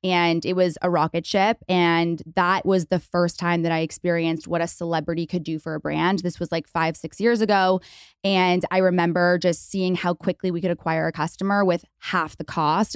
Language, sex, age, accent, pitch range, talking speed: English, female, 20-39, American, 170-195 Hz, 215 wpm